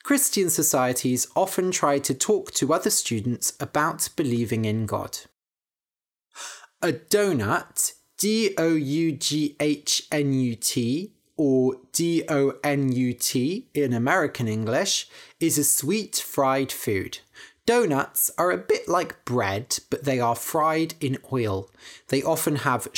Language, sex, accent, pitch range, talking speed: English, male, British, 125-170 Hz, 105 wpm